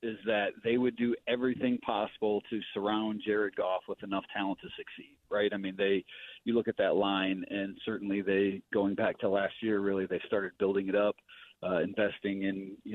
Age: 40-59